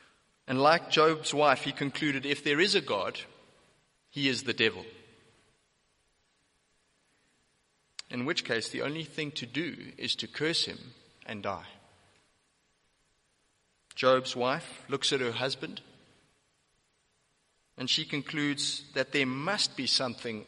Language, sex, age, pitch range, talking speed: English, male, 30-49, 125-165 Hz, 125 wpm